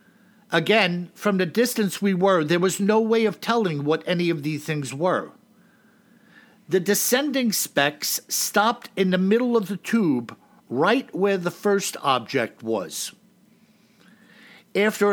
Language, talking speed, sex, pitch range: English, 140 wpm, male, 160-215 Hz